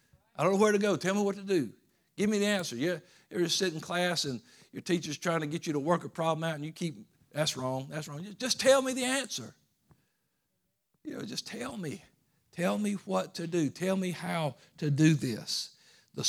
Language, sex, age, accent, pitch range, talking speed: English, male, 60-79, American, 140-180 Hz, 230 wpm